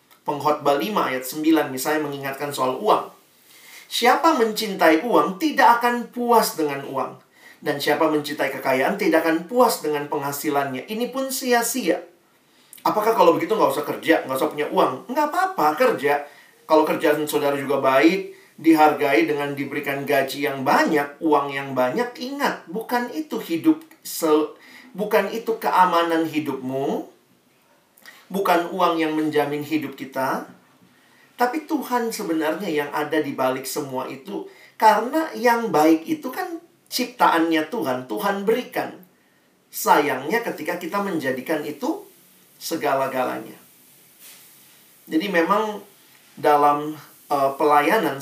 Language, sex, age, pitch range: Indonesian, male, 40-59, 145-235 Hz